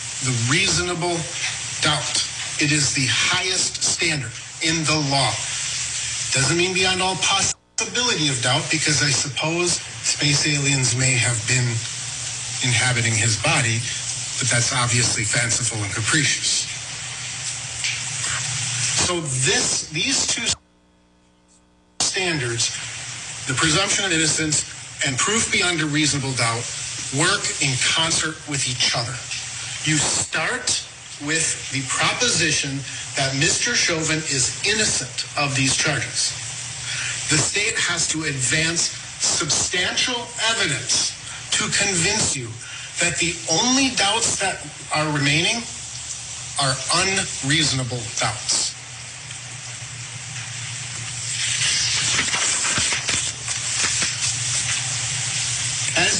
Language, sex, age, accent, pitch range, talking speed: English, male, 40-59, American, 125-150 Hz, 95 wpm